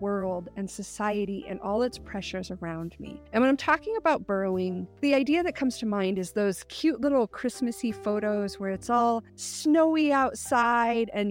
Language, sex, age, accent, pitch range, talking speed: English, female, 30-49, American, 195-235 Hz, 175 wpm